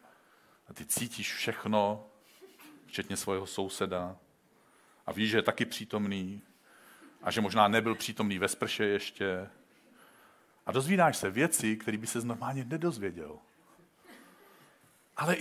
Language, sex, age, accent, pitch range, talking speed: Czech, male, 50-69, native, 110-165 Hz, 120 wpm